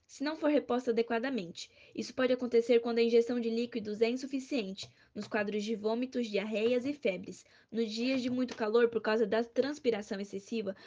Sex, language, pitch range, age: female, Portuguese, 220-250 Hz, 10-29